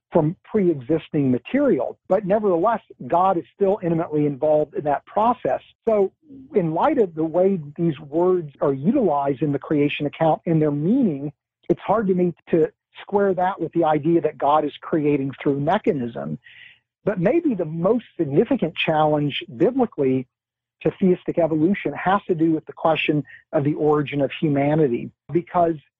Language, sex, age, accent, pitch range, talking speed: English, male, 50-69, American, 150-190 Hz, 155 wpm